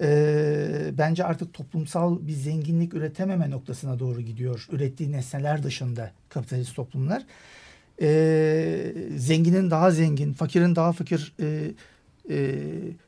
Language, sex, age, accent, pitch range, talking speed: Turkish, male, 60-79, native, 150-175 Hz, 110 wpm